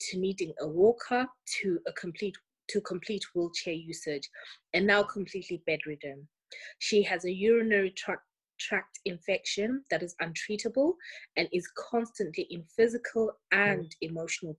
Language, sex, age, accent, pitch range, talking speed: English, female, 20-39, South African, 170-220 Hz, 130 wpm